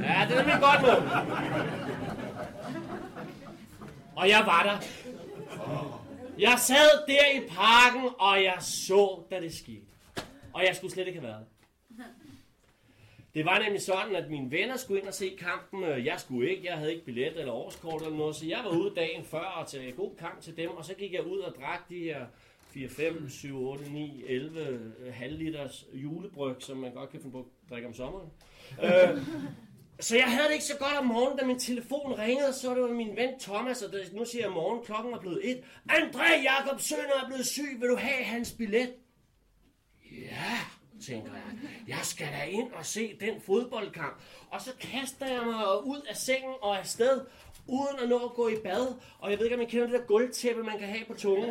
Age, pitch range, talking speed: 30-49, 165-255 Hz, 200 wpm